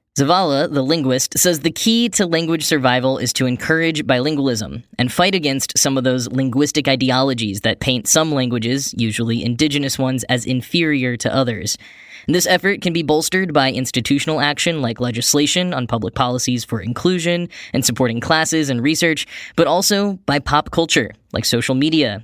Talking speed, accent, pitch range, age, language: 160 wpm, American, 120-160 Hz, 10-29, English